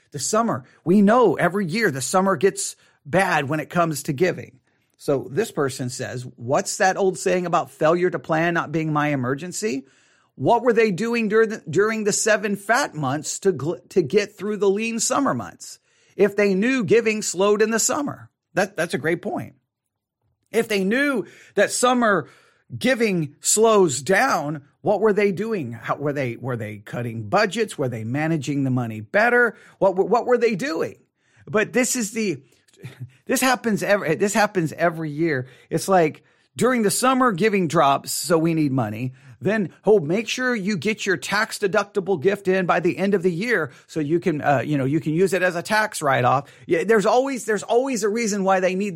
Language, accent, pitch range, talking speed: English, American, 155-215 Hz, 190 wpm